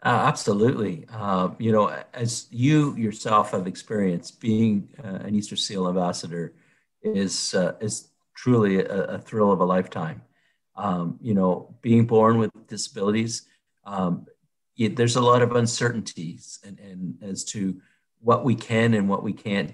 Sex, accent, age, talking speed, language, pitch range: male, American, 50-69, 155 wpm, English, 95-115 Hz